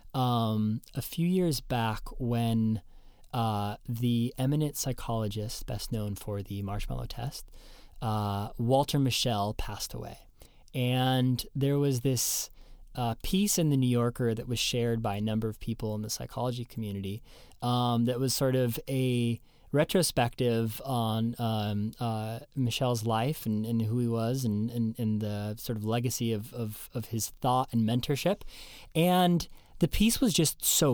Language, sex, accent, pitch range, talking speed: English, male, American, 115-145 Hz, 155 wpm